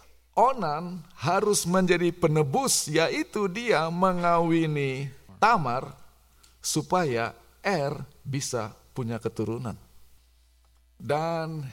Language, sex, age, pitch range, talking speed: Indonesian, male, 50-69, 115-170 Hz, 70 wpm